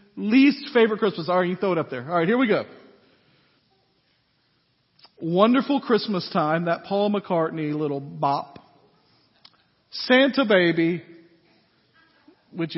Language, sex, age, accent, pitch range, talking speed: English, male, 50-69, American, 180-230 Hz, 115 wpm